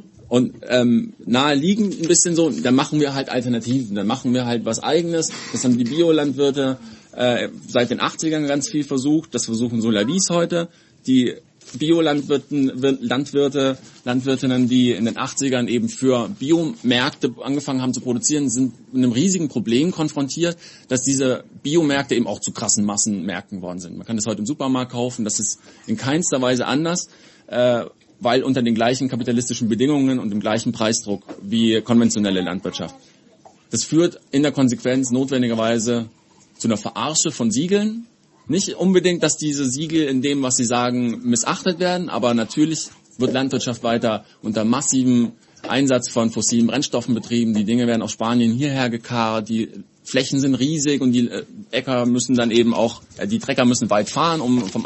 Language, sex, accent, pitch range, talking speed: English, male, German, 115-145 Hz, 165 wpm